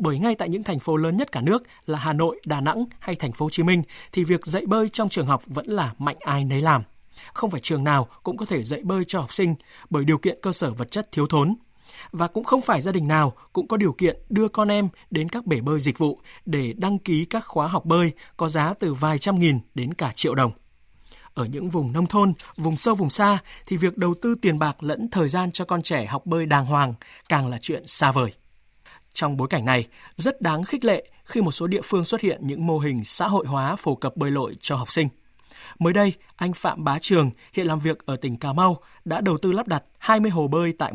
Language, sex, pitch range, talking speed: Vietnamese, male, 145-190 Hz, 250 wpm